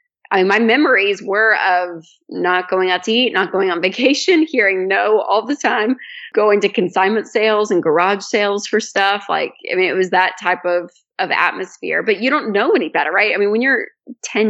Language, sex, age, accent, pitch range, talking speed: English, female, 20-39, American, 180-225 Hz, 210 wpm